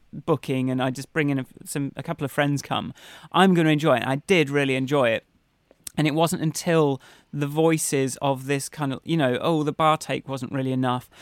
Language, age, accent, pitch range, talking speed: English, 30-49, British, 145-190 Hz, 220 wpm